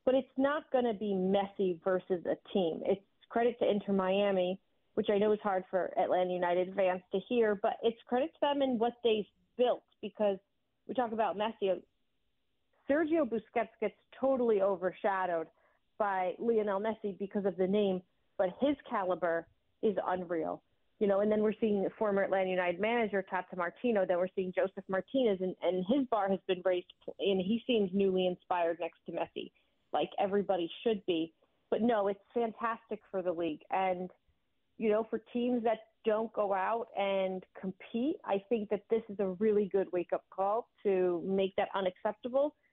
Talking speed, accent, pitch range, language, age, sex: 175 wpm, American, 185-230 Hz, English, 40-59, female